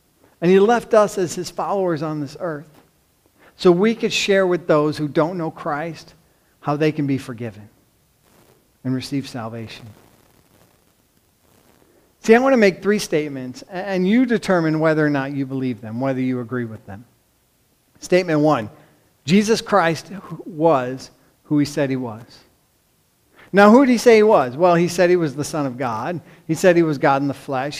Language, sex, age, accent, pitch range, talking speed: English, male, 40-59, American, 140-180 Hz, 180 wpm